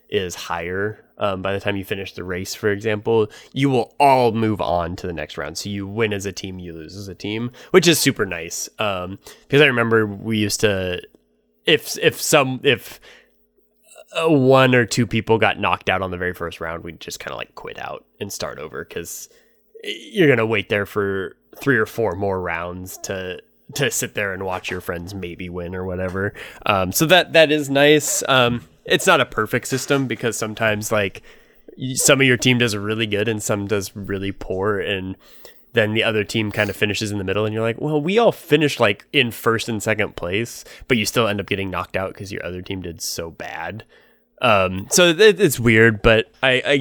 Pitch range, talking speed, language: 95-125 Hz, 215 wpm, English